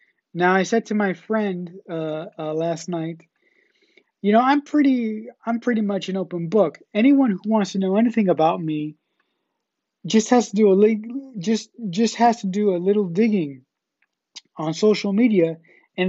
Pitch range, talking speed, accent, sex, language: 175-220 Hz, 170 wpm, American, male, English